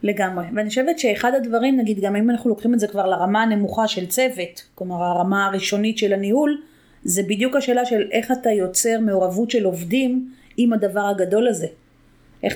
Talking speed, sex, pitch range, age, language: 175 wpm, female, 195-230 Hz, 30-49, Hebrew